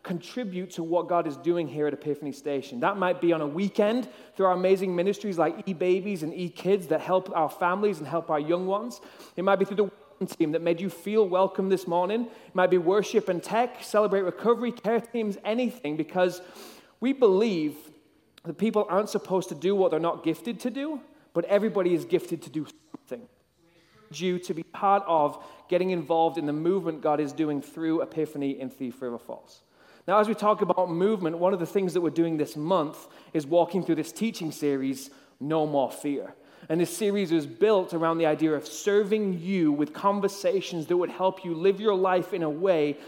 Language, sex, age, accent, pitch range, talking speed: English, male, 30-49, British, 160-200 Hz, 200 wpm